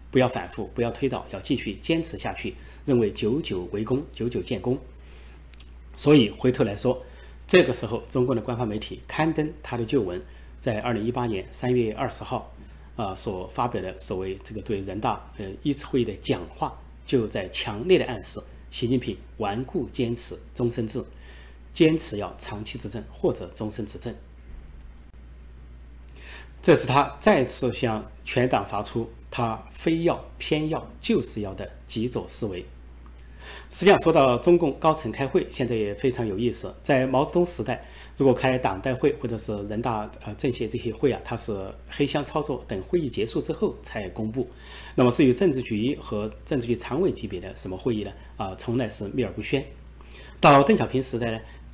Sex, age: male, 30-49